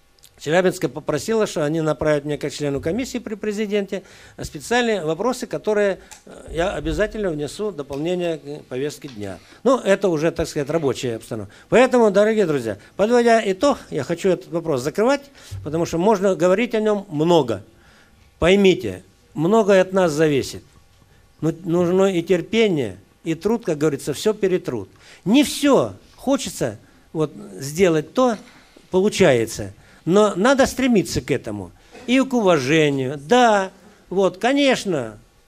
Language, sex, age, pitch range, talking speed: Russian, male, 50-69, 145-210 Hz, 135 wpm